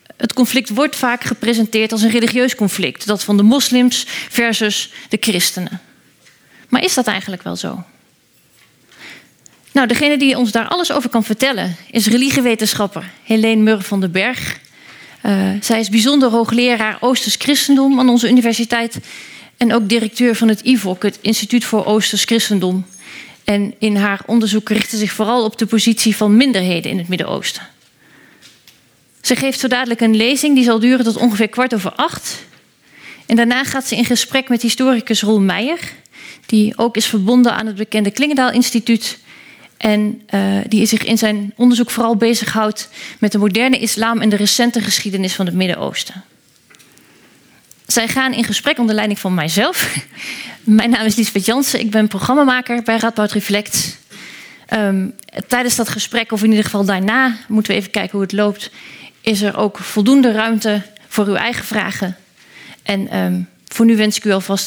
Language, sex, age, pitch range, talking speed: Dutch, female, 30-49, 205-240 Hz, 160 wpm